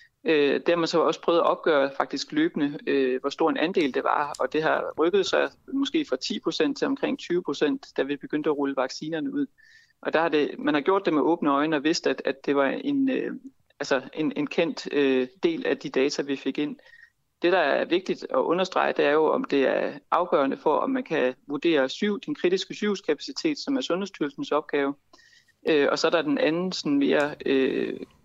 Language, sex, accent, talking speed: Danish, male, native, 205 wpm